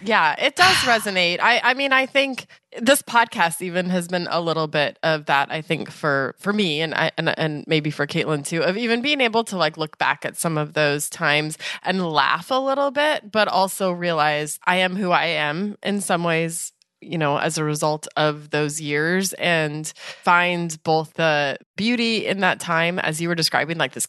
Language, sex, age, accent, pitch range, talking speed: English, female, 20-39, American, 145-180 Hz, 205 wpm